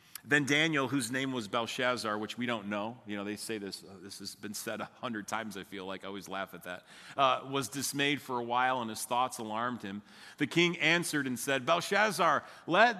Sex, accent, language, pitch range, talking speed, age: male, American, English, 120-165 Hz, 225 wpm, 40-59